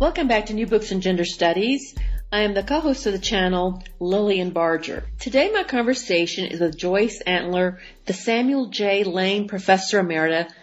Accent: American